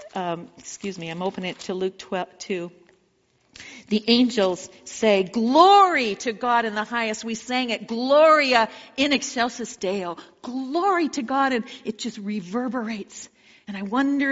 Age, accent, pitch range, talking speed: 50-69, American, 185-245 Hz, 145 wpm